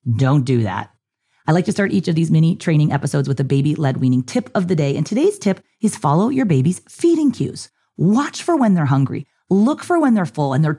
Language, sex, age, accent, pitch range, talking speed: English, female, 30-49, American, 140-200 Hz, 235 wpm